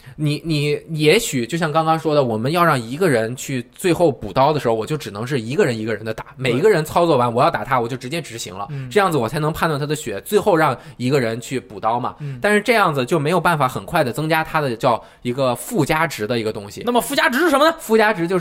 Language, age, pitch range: Chinese, 20-39, 120-165 Hz